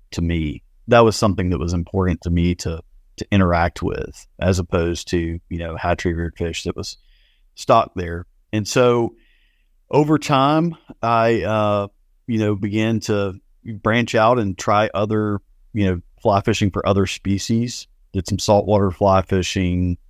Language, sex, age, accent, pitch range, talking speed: English, male, 40-59, American, 90-110 Hz, 160 wpm